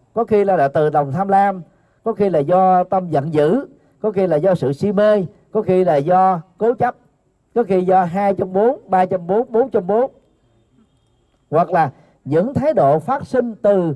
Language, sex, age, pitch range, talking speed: Vietnamese, male, 40-59, 140-210 Hz, 190 wpm